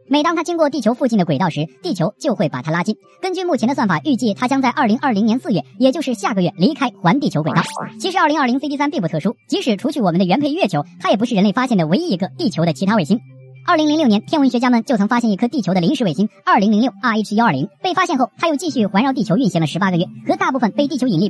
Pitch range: 185-280 Hz